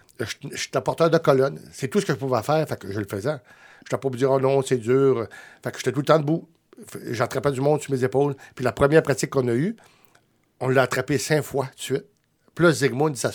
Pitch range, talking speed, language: 125-150 Hz, 260 wpm, French